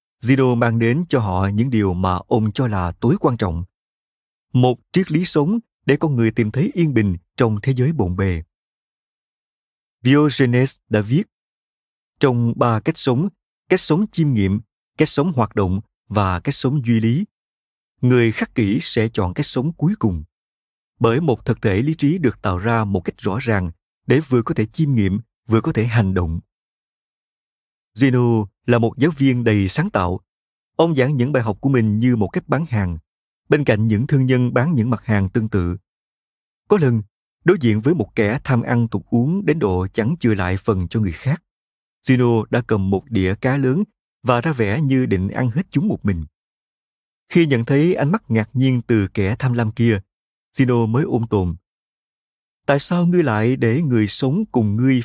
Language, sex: Vietnamese, male